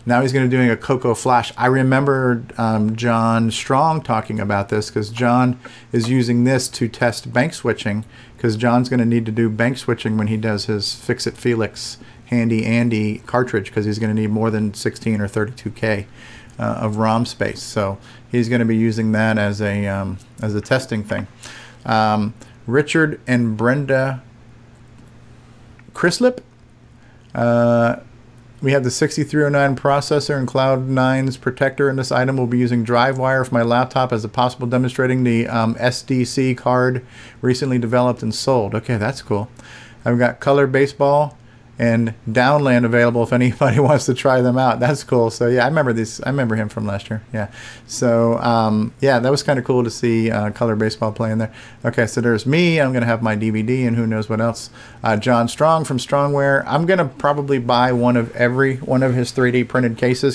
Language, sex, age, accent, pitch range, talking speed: English, male, 40-59, American, 115-130 Hz, 185 wpm